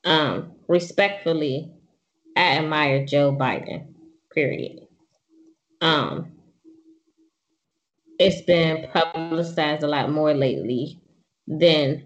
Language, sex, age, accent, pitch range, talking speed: English, female, 20-39, American, 160-215 Hz, 80 wpm